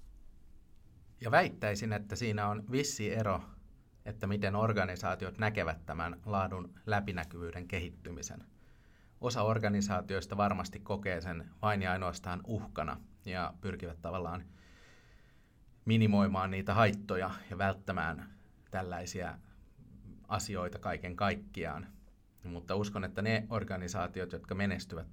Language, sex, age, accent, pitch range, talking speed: Finnish, male, 30-49, native, 90-105 Hz, 105 wpm